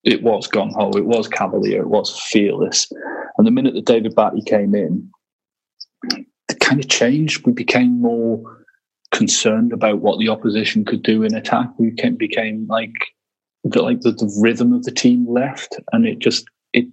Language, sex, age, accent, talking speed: English, male, 30-49, British, 180 wpm